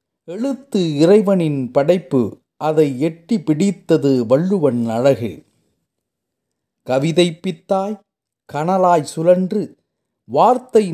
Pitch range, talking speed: 125-185 Hz, 65 wpm